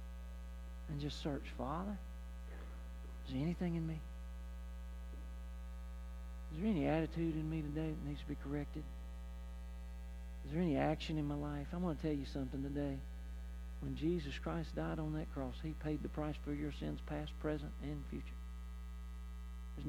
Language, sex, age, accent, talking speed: English, male, 50-69, American, 165 wpm